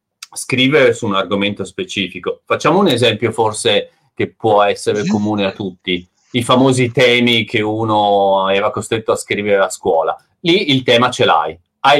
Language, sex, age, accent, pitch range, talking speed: Italian, male, 40-59, native, 100-155 Hz, 165 wpm